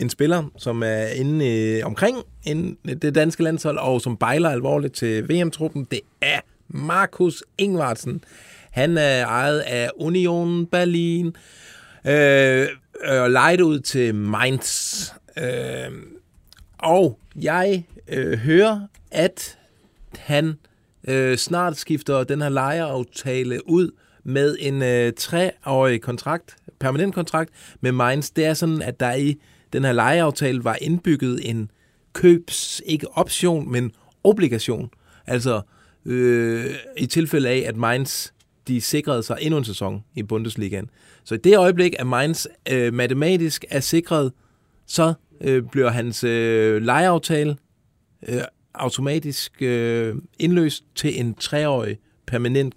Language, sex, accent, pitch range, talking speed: Danish, male, native, 120-160 Hz, 125 wpm